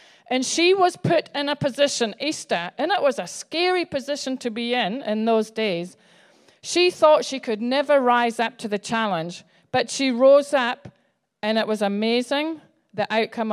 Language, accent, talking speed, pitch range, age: English, British, 175 wpm, 205-265 Hz, 40-59